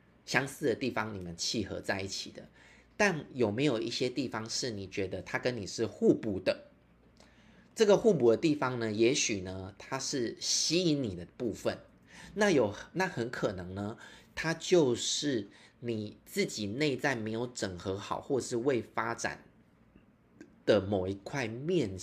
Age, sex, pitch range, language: 30-49, male, 100-130 Hz, Chinese